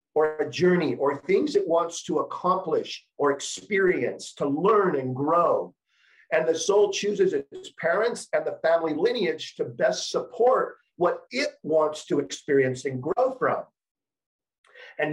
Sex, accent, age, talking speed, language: male, American, 50-69, 145 wpm, English